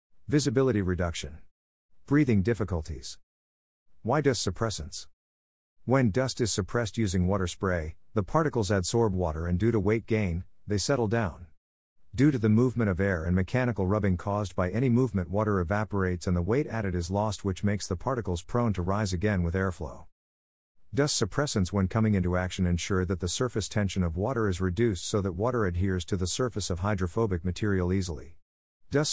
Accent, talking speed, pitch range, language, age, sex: American, 175 wpm, 90-115 Hz, English, 50-69, male